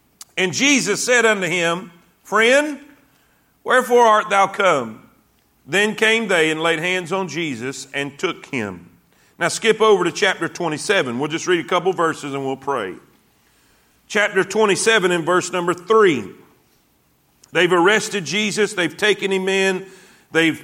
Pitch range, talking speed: 180-225 Hz, 150 wpm